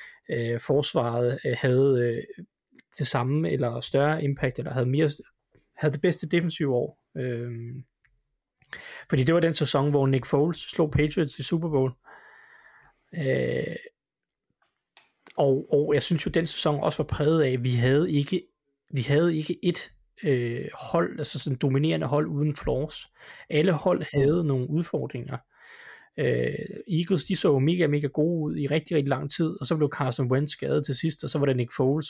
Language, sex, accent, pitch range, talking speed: Danish, male, native, 130-165 Hz, 160 wpm